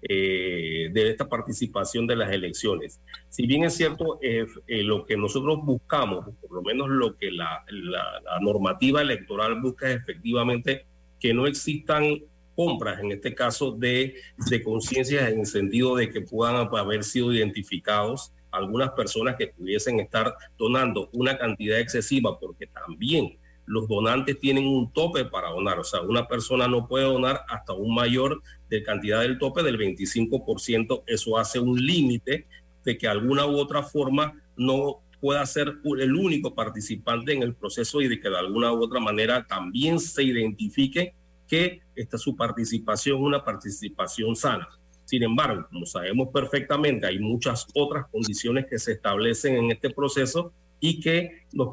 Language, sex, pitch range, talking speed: Spanish, male, 110-140 Hz, 160 wpm